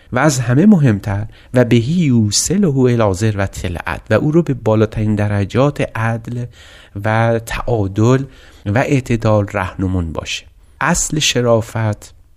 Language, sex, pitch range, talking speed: Persian, male, 100-125 Hz, 120 wpm